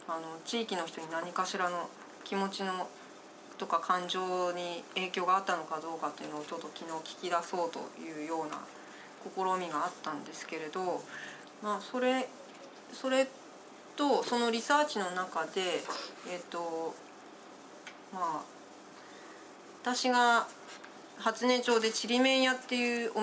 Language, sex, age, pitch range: Japanese, female, 30-49, 170-235 Hz